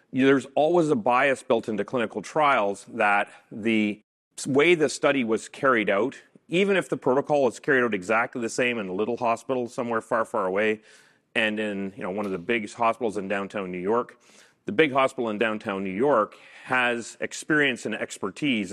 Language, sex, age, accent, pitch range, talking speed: English, male, 40-59, American, 105-135 Hz, 185 wpm